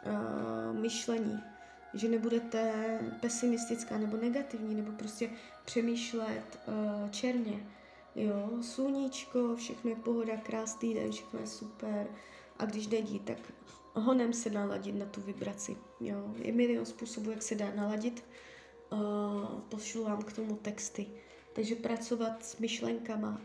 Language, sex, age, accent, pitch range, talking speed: Czech, female, 20-39, native, 205-235 Hz, 125 wpm